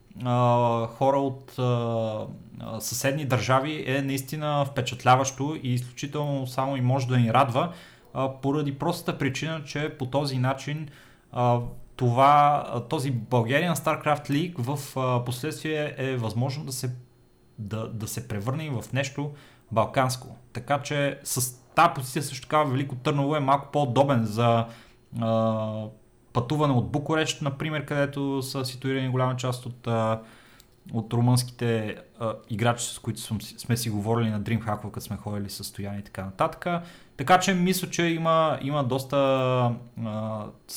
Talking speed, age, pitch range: 145 wpm, 30-49, 115-140 Hz